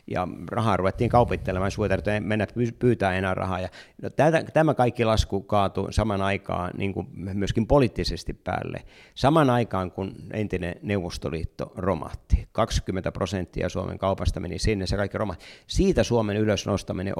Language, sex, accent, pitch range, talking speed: Finnish, male, native, 95-115 Hz, 150 wpm